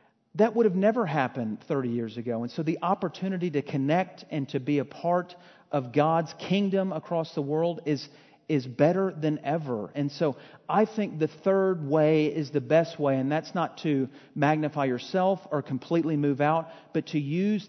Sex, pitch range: male, 135-160 Hz